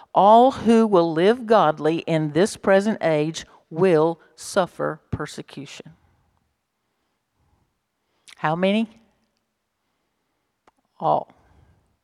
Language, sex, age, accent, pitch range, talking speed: English, female, 50-69, American, 165-215 Hz, 75 wpm